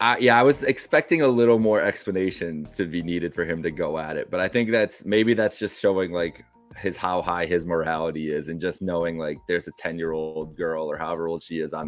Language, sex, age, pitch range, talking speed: English, male, 20-39, 80-100 Hz, 240 wpm